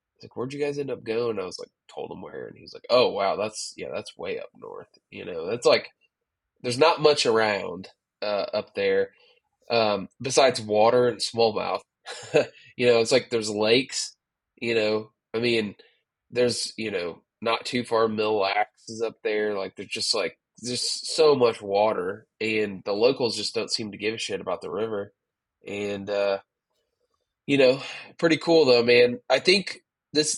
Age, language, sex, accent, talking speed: 20-39, English, male, American, 185 wpm